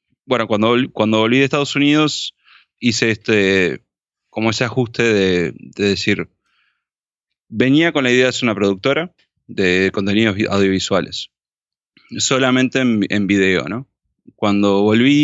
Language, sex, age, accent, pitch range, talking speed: Spanish, male, 20-39, Argentinian, 100-120 Hz, 130 wpm